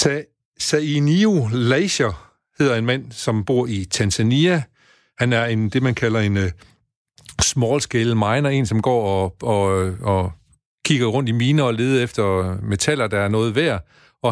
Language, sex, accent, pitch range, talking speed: Danish, male, native, 110-140 Hz, 170 wpm